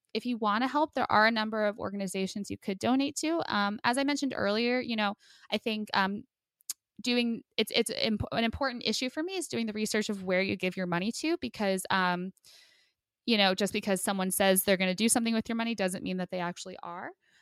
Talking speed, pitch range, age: 230 wpm, 195-235 Hz, 20-39